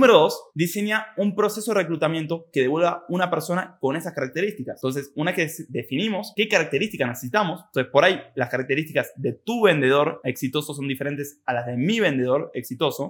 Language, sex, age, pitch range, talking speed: Spanish, male, 20-39, 130-180 Hz, 175 wpm